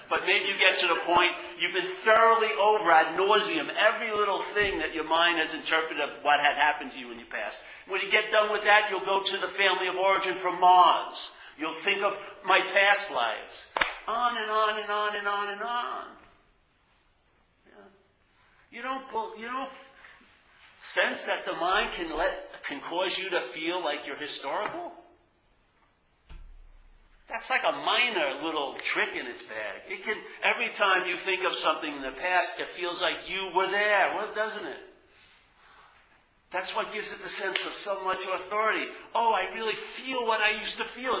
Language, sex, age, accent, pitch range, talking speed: English, male, 50-69, American, 170-215 Hz, 185 wpm